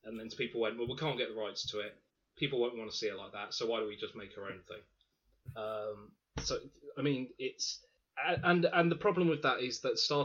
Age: 30-49